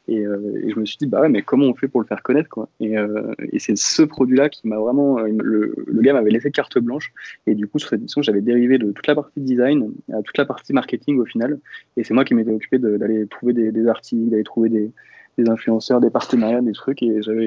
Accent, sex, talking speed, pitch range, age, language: French, male, 265 wpm, 110-130 Hz, 20-39, French